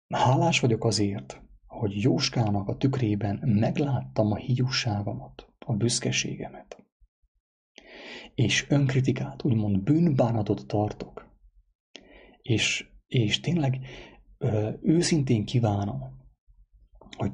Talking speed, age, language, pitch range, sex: 80 wpm, 30-49, English, 105-130 Hz, male